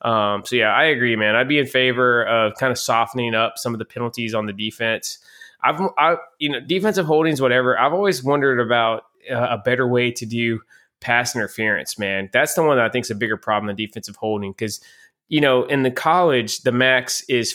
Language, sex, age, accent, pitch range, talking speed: English, male, 20-39, American, 105-125 Hz, 220 wpm